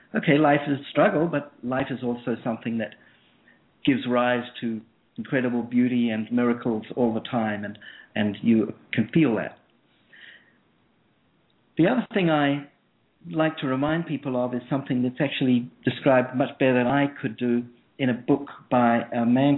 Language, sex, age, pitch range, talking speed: English, male, 50-69, 120-140 Hz, 160 wpm